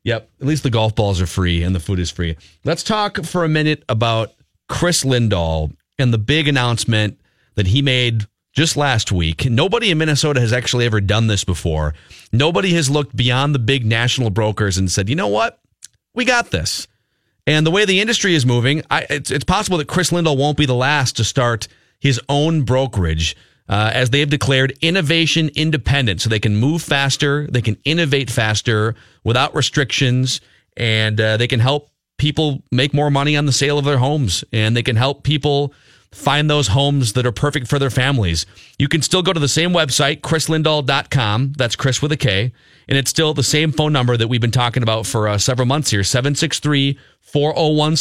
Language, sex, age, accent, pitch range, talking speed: English, male, 40-59, American, 110-150 Hz, 195 wpm